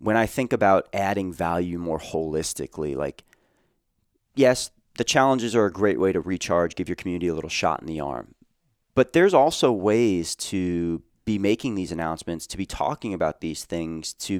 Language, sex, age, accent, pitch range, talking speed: English, male, 30-49, American, 85-100 Hz, 180 wpm